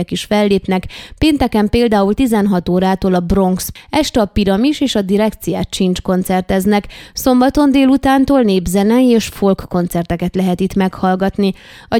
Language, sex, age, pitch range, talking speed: Hungarian, female, 20-39, 190-235 Hz, 130 wpm